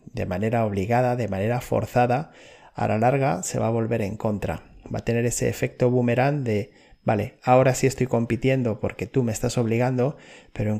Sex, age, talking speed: male, 30-49, 190 wpm